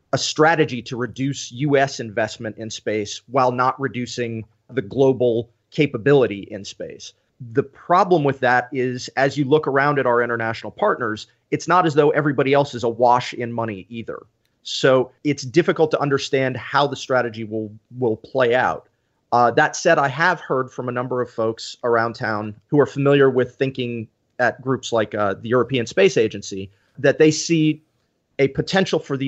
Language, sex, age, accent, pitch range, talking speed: English, male, 30-49, American, 120-140 Hz, 175 wpm